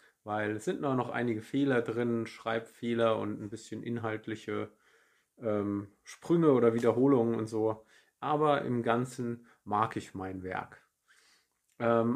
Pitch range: 110-120 Hz